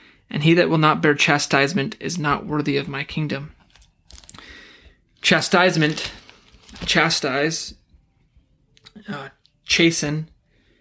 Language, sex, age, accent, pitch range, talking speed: English, male, 20-39, American, 140-165 Hz, 95 wpm